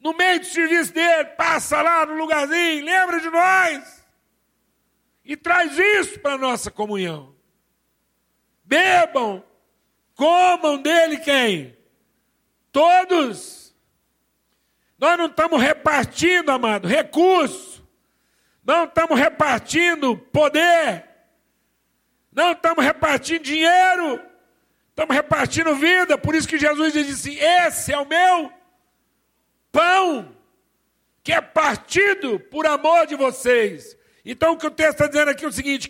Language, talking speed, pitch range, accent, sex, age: Portuguese, 115 wpm, 295-345 Hz, Brazilian, male, 60-79